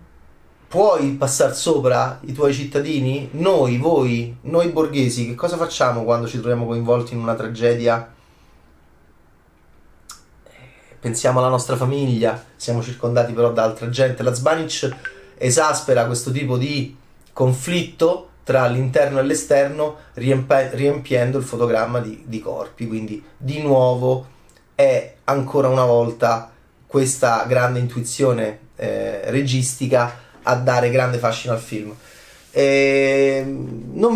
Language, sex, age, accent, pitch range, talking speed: Italian, male, 30-49, native, 115-135 Hz, 120 wpm